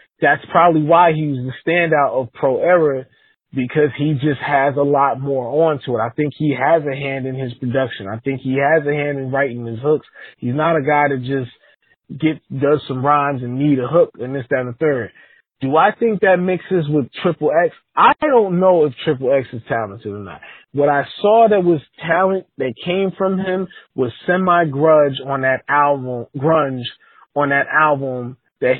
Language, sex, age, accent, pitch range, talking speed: English, male, 20-39, American, 135-160 Hz, 200 wpm